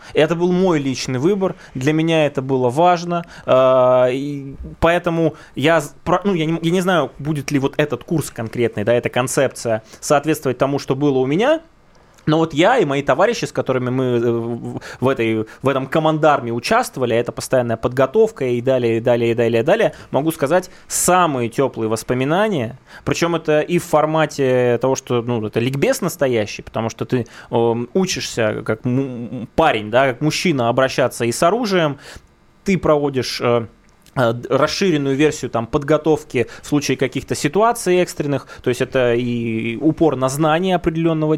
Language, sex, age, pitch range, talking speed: Russian, male, 20-39, 125-160 Hz, 150 wpm